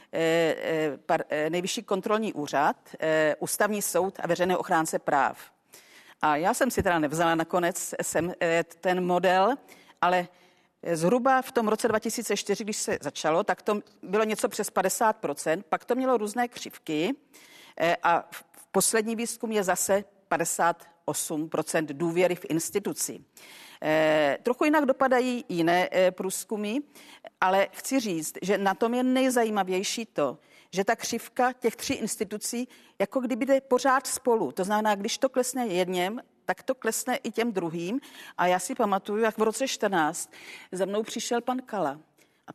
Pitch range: 175-240 Hz